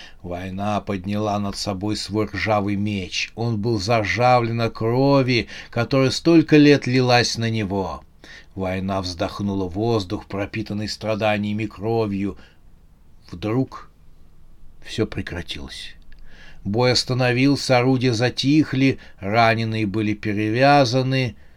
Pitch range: 100-125 Hz